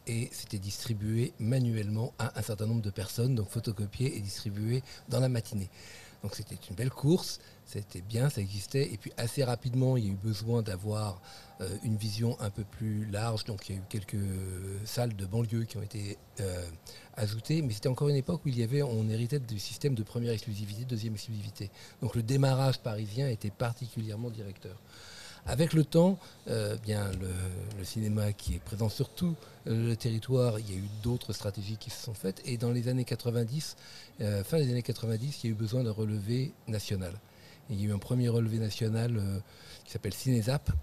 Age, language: 50-69, French